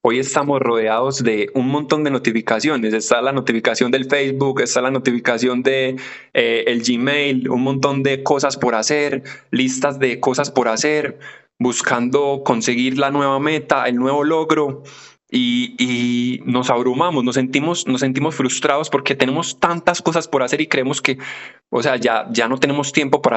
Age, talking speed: 20-39, 165 wpm